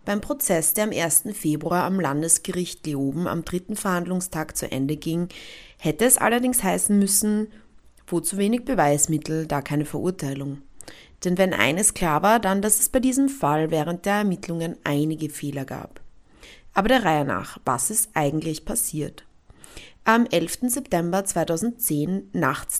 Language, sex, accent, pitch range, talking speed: German, female, German, 155-210 Hz, 145 wpm